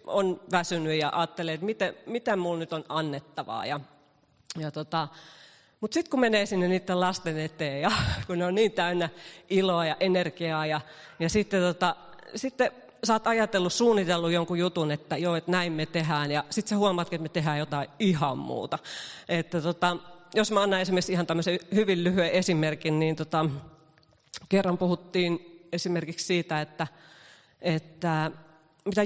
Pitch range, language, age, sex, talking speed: 165-200 Hz, Finnish, 30-49, female, 160 wpm